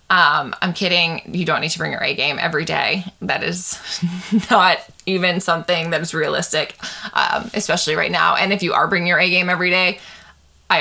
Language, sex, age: English, female, 20-39